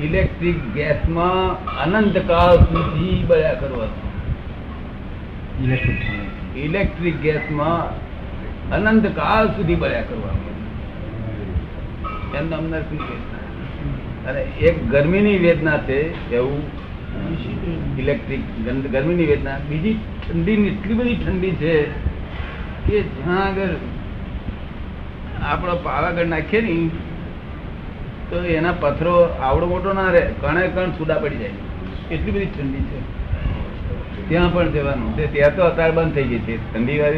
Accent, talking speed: native, 30 wpm